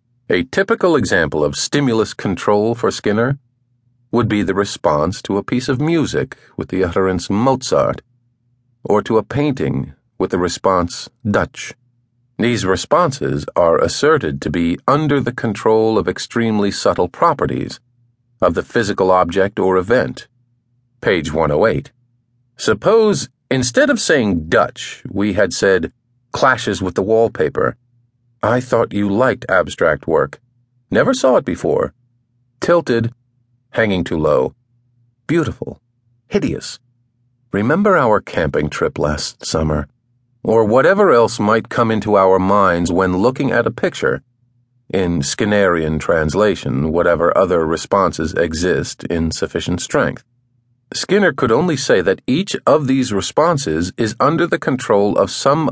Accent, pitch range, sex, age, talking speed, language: American, 100-125 Hz, male, 50-69, 130 wpm, English